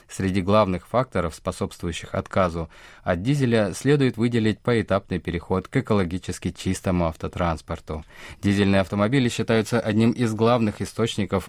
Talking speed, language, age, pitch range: 115 wpm, Russian, 20-39, 85-110 Hz